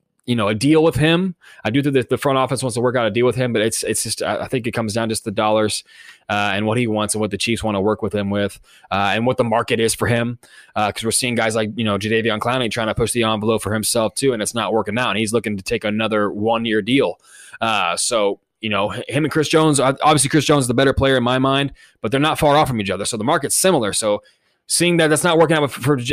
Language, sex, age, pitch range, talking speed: English, male, 20-39, 110-130 Hz, 290 wpm